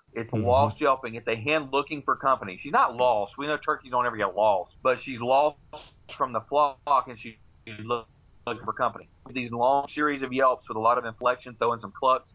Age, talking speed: 40-59, 210 wpm